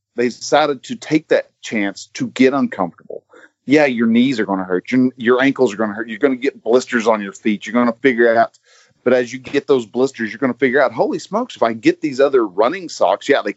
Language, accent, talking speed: English, American, 260 wpm